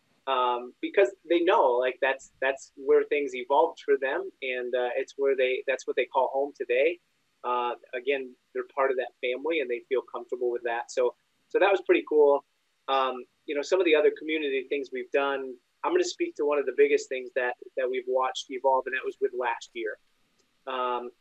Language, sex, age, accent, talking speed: English, male, 30-49, American, 210 wpm